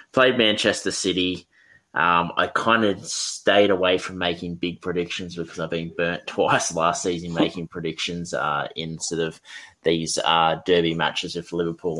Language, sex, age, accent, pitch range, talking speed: English, male, 20-39, Australian, 80-90 Hz, 160 wpm